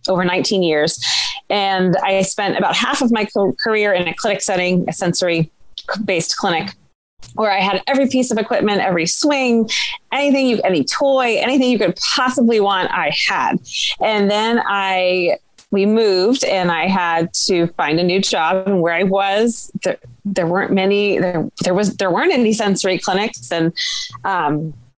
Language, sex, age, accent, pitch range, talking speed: English, female, 30-49, American, 175-215 Hz, 170 wpm